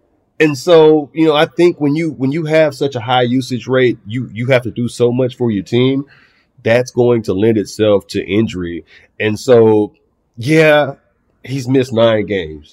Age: 30-49